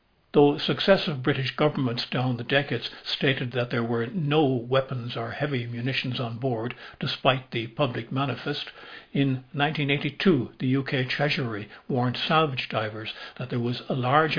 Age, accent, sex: 60-79, American, male